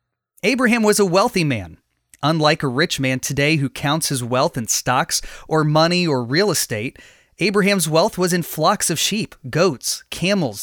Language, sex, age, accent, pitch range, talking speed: English, male, 30-49, American, 140-190 Hz, 170 wpm